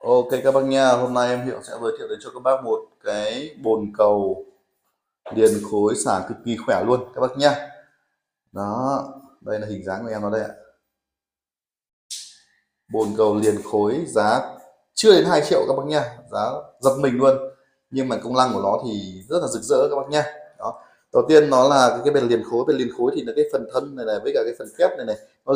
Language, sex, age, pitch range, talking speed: Vietnamese, male, 20-39, 105-150 Hz, 225 wpm